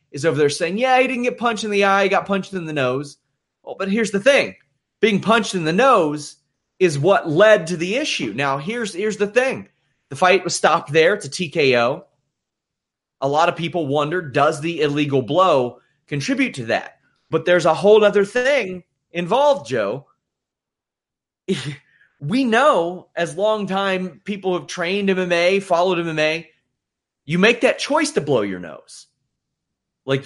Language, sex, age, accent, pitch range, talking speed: English, male, 30-49, American, 150-205 Hz, 175 wpm